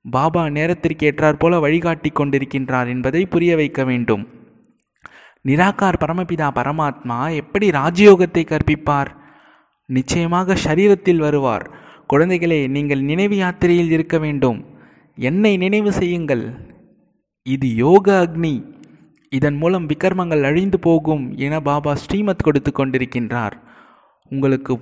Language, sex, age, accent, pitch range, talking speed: Tamil, male, 20-39, native, 140-180 Hz, 95 wpm